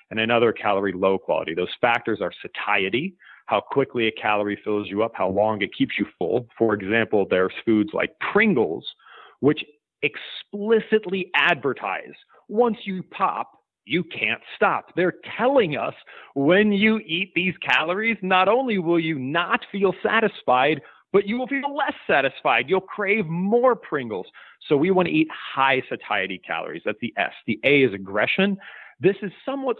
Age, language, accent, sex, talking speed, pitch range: 40-59, English, American, male, 160 wpm, 110-180 Hz